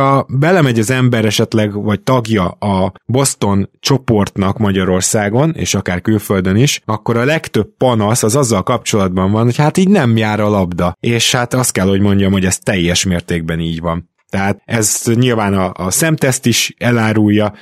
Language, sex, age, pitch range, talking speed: Hungarian, male, 20-39, 100-125 Hz, 170 wpm